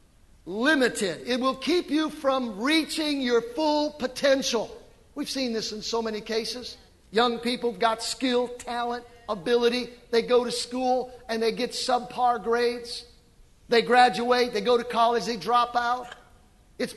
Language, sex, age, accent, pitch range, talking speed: English, male, 50-69, American, 230-275 Hz, 150 wpm